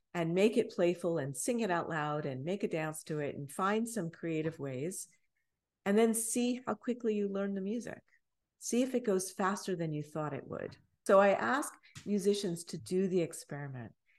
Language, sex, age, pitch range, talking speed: English, female, 50-69, 150-205 Hz, 200 wpm